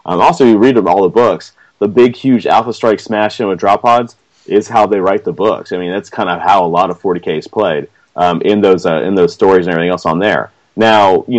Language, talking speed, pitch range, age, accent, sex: English, 255 wpm, 85-105 Hz, 30-49, American, male